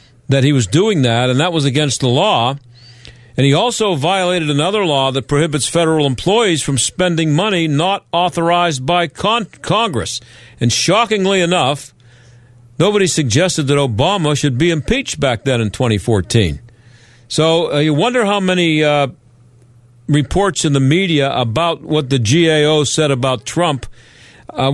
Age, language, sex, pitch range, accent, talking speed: 50-69, English, male, 120-155 Hz, American, 150 wpm